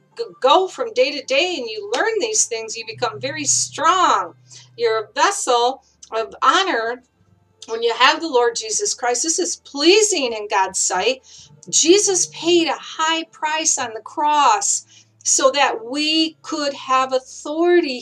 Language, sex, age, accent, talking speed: English, female, 50-69, American, 155 wpm